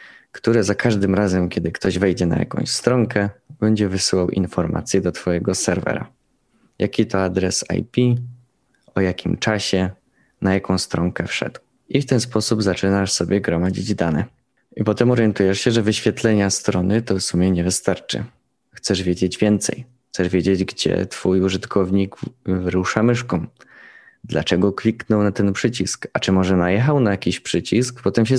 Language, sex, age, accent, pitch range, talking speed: Polish, male, 20-39, native, 95-115 Hz, 150 wpm